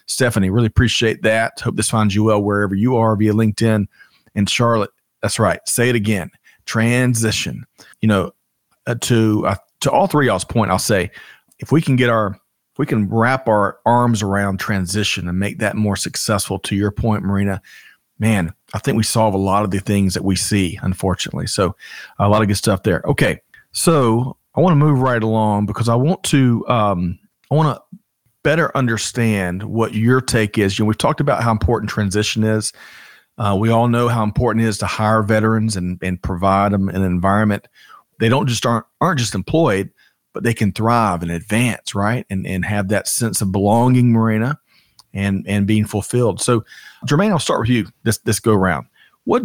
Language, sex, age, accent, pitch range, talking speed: English, male, 40-59, American, 100-120 Hz, 195 wpm